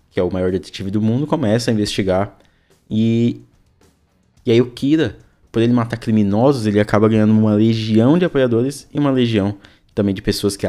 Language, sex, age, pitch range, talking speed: Portuguese, male, 20-39, 100-120 Hz, 185 wpm